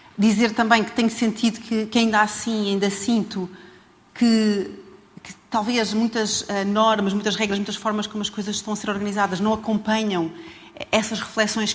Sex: female